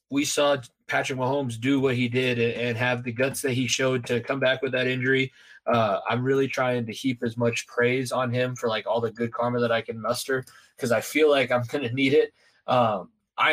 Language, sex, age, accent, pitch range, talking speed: English, male, 20-39, American, 120-145 Hz, 235 wpm